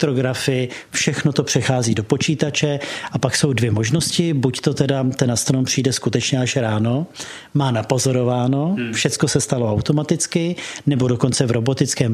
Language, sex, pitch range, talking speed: Czech, male, 125-145 Hz, 150 wpm